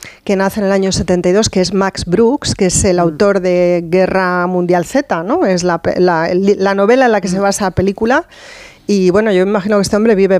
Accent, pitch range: Spanish, 185-225 Hz